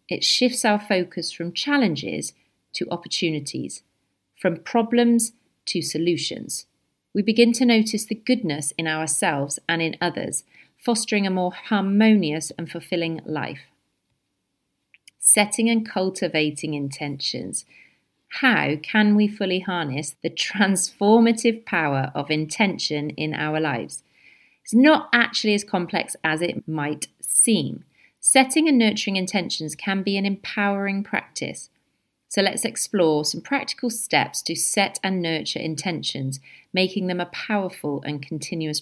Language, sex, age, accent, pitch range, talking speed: English, female, 40-59, British, 155-215 Hz, 125 wpm